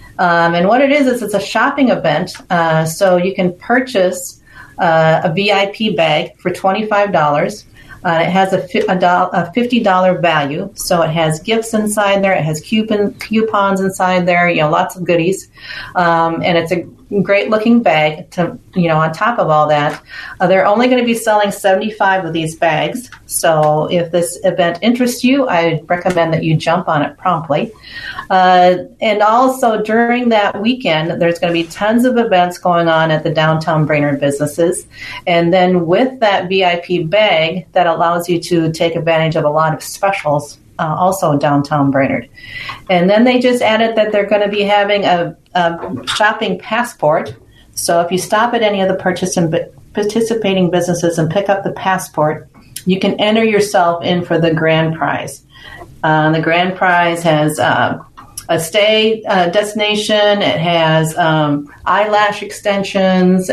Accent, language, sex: American, English, female